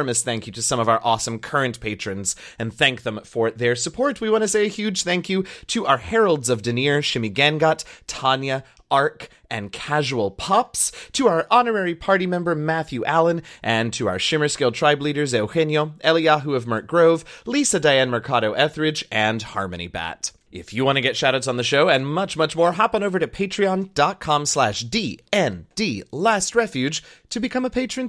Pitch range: 120-185 Hz